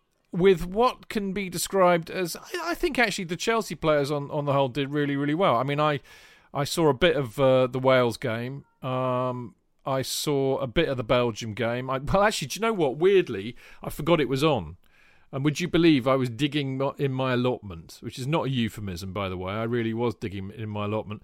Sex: male